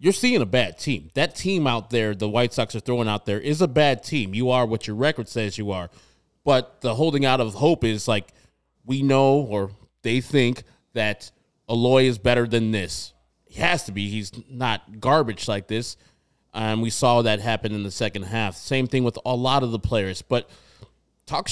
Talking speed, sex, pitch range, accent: 210 wpm, male, 110-145 Hz, American